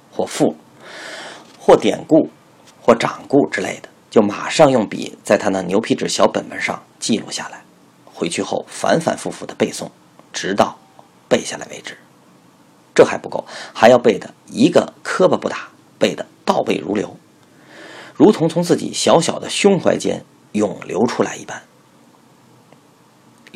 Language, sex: Chinese, male